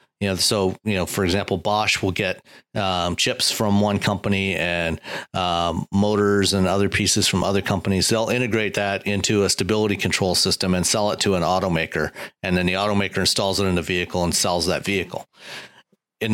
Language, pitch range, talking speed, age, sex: English, 95-110 Hz, 190 wpm, 40-59, male